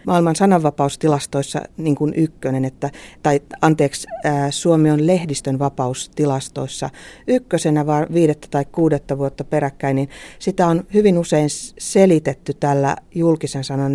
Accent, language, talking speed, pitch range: native, Finnish, 125 wpm, 135-155 Hz